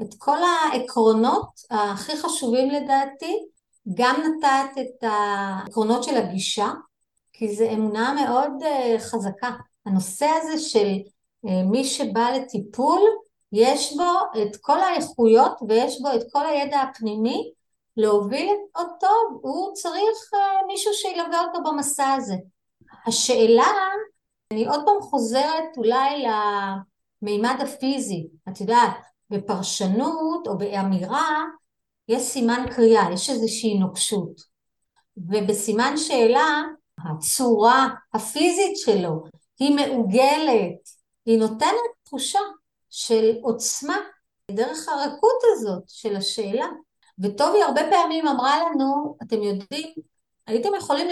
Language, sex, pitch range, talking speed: Hebrew, female, 220-310 Hz, 105 wpm